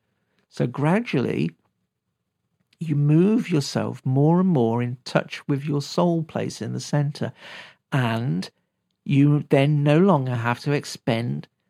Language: English